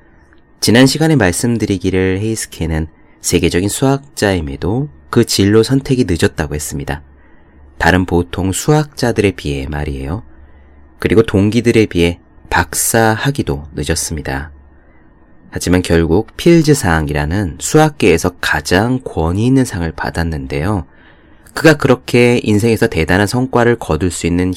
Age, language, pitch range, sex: 30-49, Korean, 75-110 Hz, male